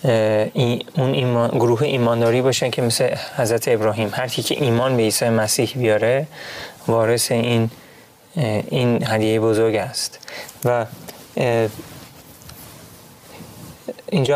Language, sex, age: Persian, male, 30-49